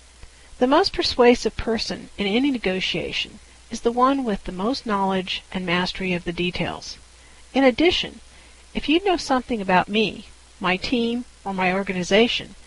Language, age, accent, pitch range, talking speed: English, 50-69, American, 175-235 Hz, 150 wpm